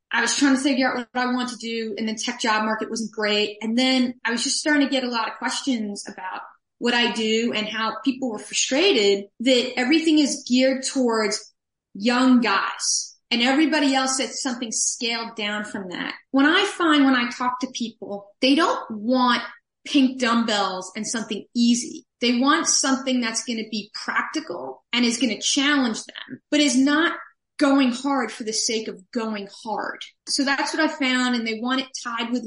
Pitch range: 220-265 Hz